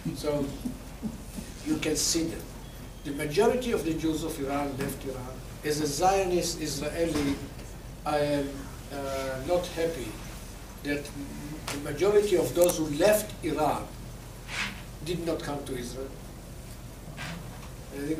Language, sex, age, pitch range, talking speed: English, male, 50-69, 140-185 Hz, 130 wpm